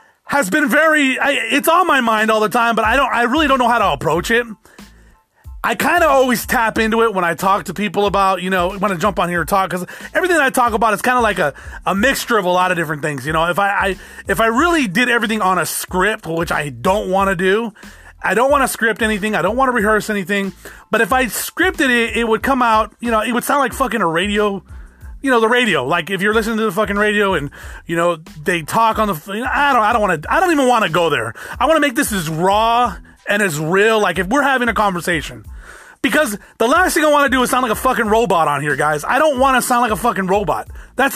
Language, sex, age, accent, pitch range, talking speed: English, male, 30-49, American, 195-255 Hz, 270 wpm